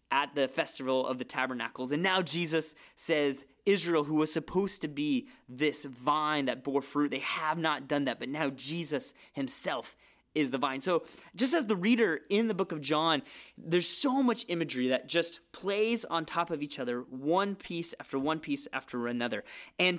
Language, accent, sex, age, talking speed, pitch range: English, American, male, 20-39, 190 wpm, 140-175 Hz